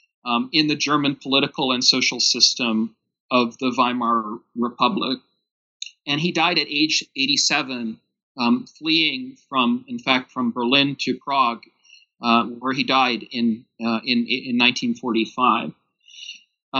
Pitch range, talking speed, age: 130-165 Hz, 130 wpm, 40-59